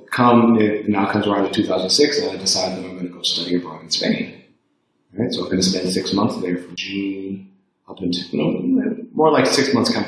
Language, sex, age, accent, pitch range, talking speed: English, male, 30-49, American, 90-100 Hz, 240 wpm